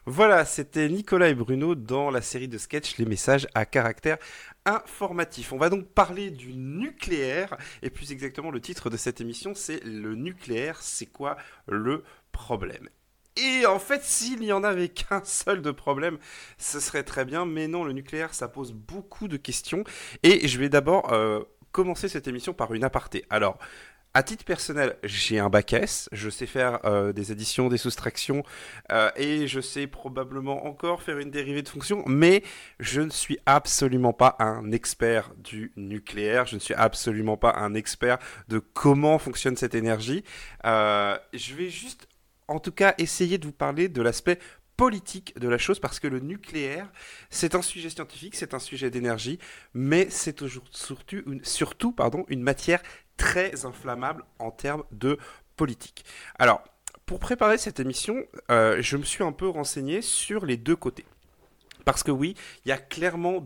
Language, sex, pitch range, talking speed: French, male, 120-175 Hz, 180 wpm